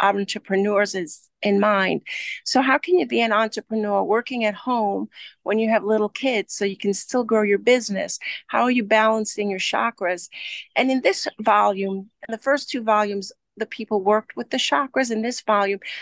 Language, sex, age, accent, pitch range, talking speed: English, female, 40-59, American, 190-225 Hz, 185 wpm